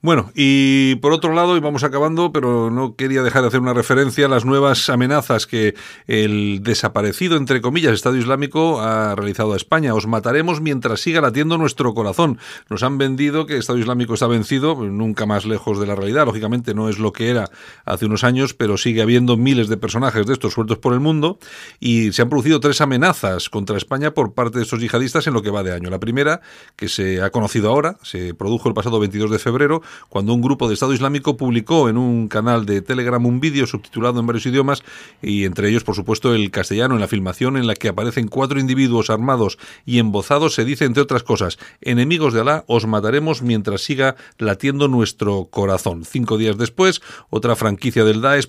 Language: Spanish